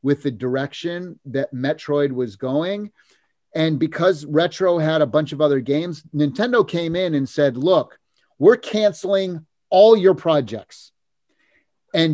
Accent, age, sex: American, 30-49, male